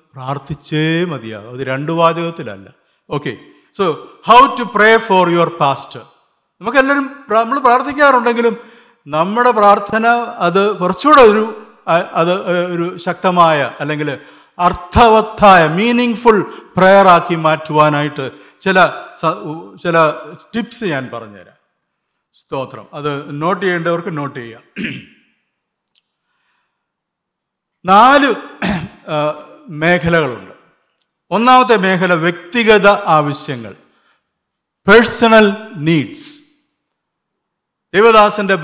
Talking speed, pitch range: 80 wpm, 155-215 Hz